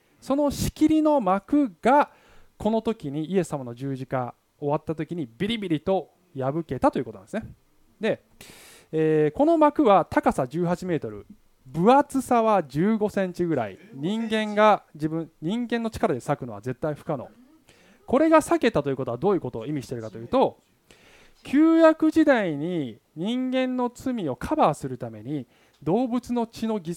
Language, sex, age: Japanese, male, 20-39